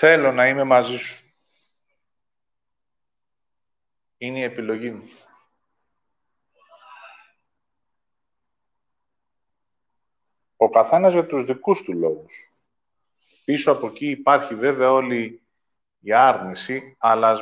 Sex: male